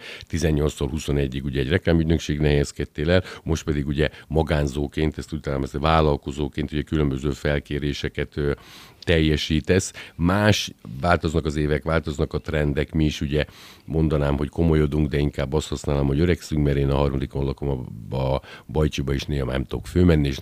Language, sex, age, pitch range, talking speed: Hungarian, male, 50-69, 70-85 Hz, 155 wpm